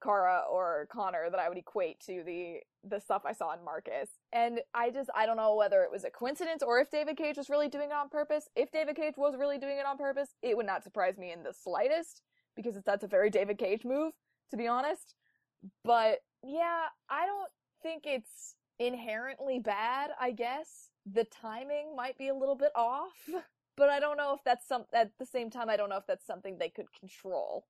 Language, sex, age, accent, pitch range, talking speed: English, female, 20-39, American, 205-285 Hz, 220 wpm